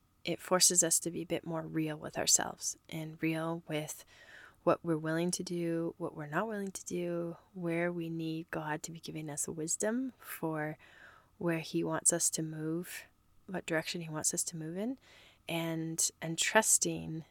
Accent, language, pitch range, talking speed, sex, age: American, English, 155-170 Hz, 180 wpm, female, 20-39